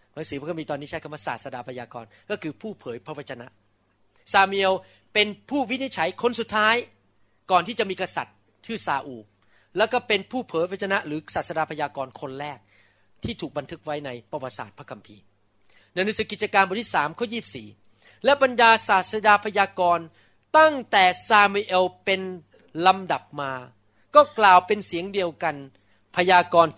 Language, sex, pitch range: Thai, male, 130-200 Hz